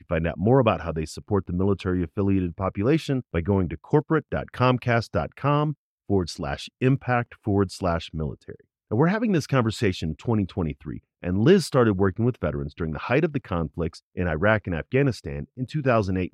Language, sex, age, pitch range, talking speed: English, male, 40-59, 85-125 Hz, 165 wpm